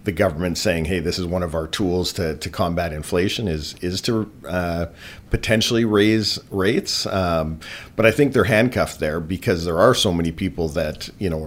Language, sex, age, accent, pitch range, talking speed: English, male, 50-69, American, 85-105 Hz, 195 wpm